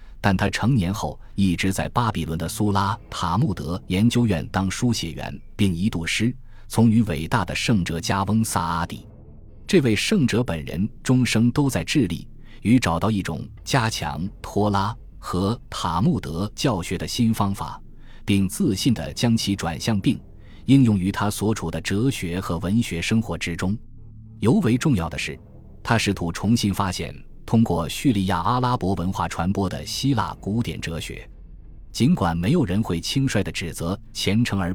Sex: male